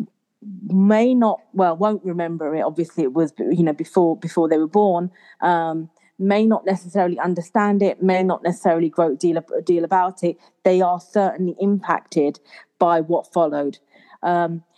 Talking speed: 160 wpm